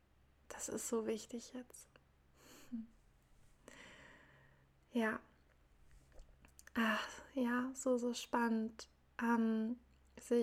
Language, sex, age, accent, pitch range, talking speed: German, female, 20-39, German, 220-240 Hz, 75 wpm